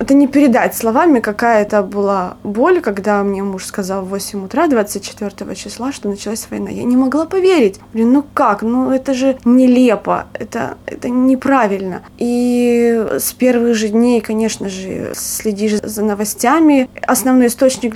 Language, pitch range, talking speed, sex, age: Russian, 210-255 Hz, 155 wpm, female, 20-39